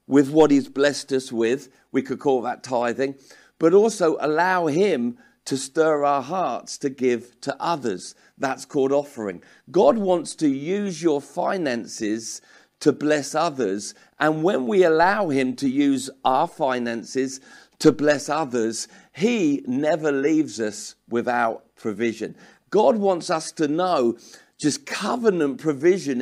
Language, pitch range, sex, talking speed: English, 125-165 Hz, male, 140 wpm